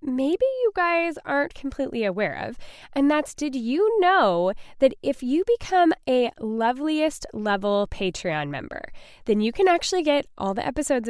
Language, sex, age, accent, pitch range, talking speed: English, female, 10-29, American, 205-300 Hz, 155 wpm